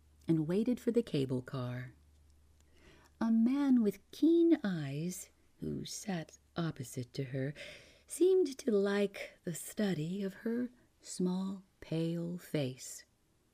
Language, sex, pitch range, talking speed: English, female, 125-205 Hz, 115 wpm